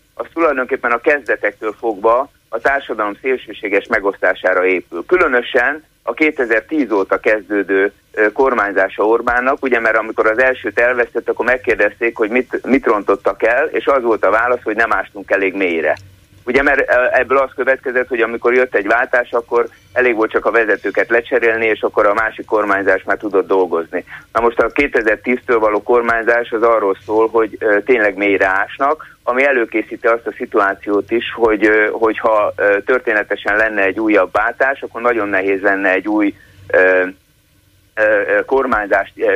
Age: 30-49